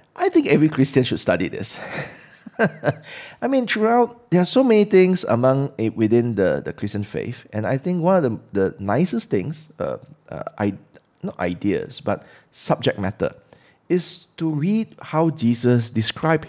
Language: English